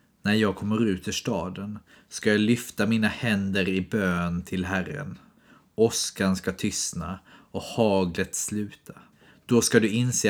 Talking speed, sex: 145 wpm, male